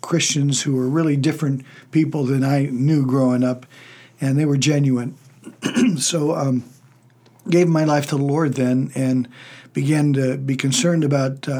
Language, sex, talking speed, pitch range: English, male, 165 wpm, 130-150 Hz